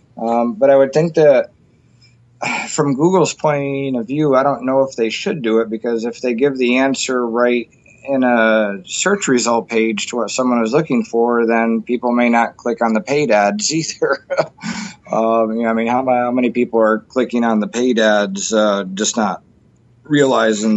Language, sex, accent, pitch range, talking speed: English, male, American, 105-120 Hz, 180 wpm